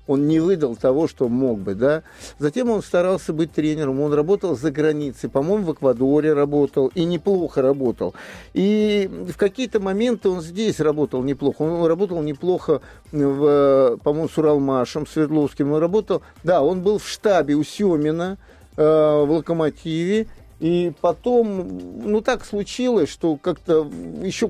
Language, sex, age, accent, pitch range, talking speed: Russian, male, 50-69, native, 150-215 Hz, 145 wpm